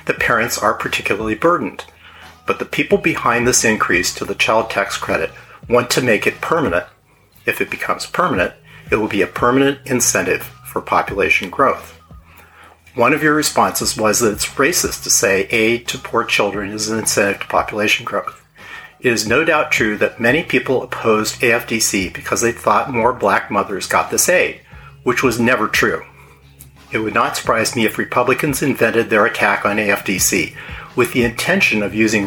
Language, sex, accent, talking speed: English, male, American, 175 wpm